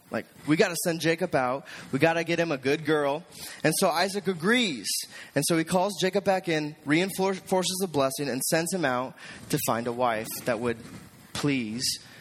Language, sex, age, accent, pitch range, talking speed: English, male, 20-39, American, 135-175 Hz, 185 wpm